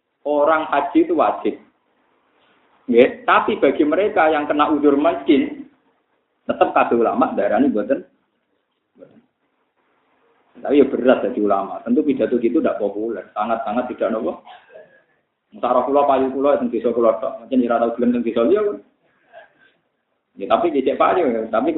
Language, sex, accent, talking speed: Indonesian, male, native, 135 wpm